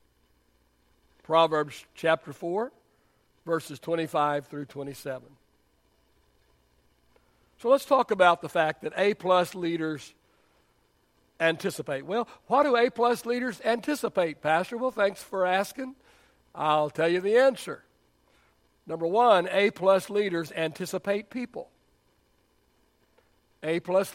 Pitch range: 120-195 Hz